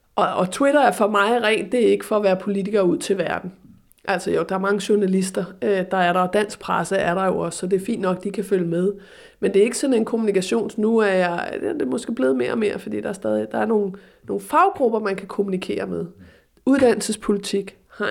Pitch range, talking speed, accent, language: 190-235 Hz, 240 wpm, native, Danish